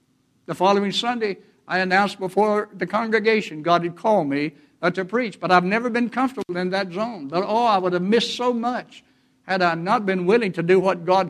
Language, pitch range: English, 180-230 Hz